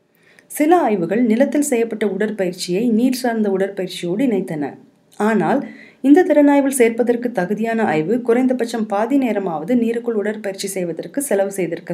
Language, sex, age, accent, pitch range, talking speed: Tamil, female, 30-49, native, 200-255 Hz, 115 wpm